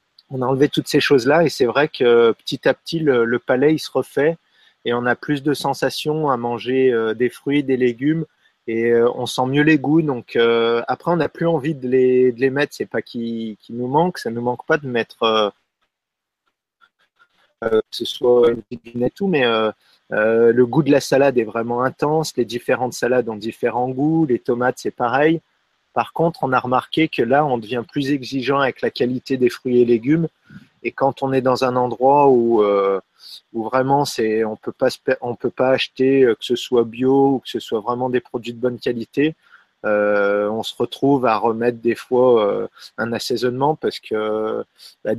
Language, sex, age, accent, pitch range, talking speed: French, male, 30-49, French, 120-140 Hz, 210 wpm